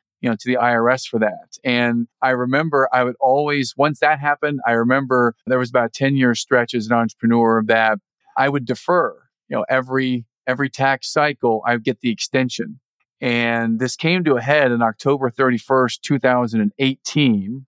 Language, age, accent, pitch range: English, 40-59, American, 115-135 Hz